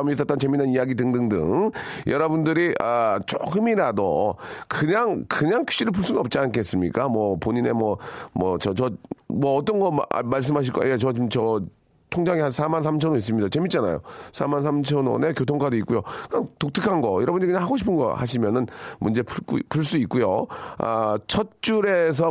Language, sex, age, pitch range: Korean, male, 40-59, 115-155 Hz